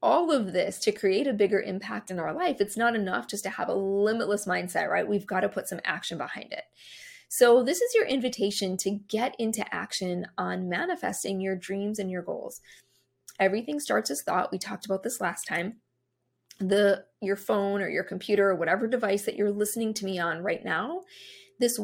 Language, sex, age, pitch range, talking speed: English, female, 20-39, 190-230 Hz, 200 wpm